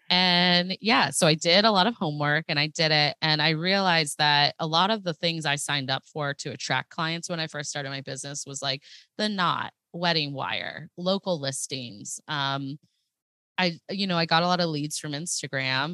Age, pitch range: 20-39, 135-165 Hz